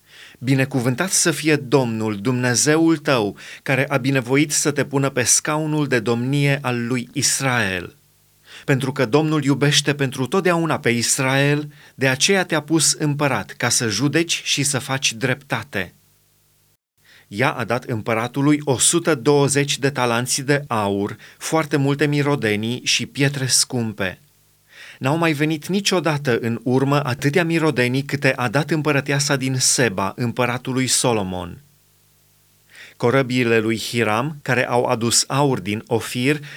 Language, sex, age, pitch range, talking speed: Romanian, male, 30-49, 125-150 Hz, 130 wpm